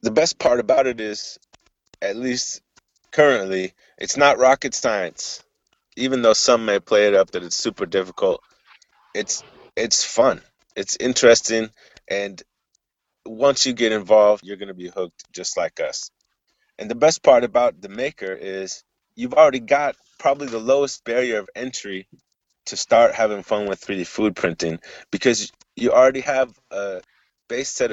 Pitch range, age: 100-135 Hz, 30-49